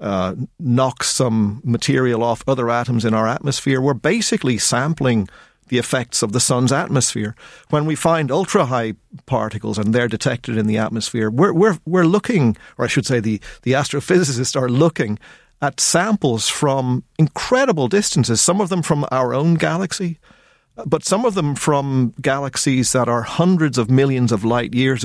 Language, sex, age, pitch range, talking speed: English, male, 50-69, 120-165 Hz, 170 wpm